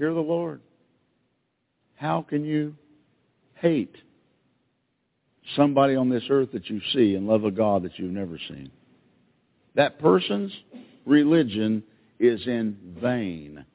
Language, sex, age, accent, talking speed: English, male, 50-69, American, 120 wpm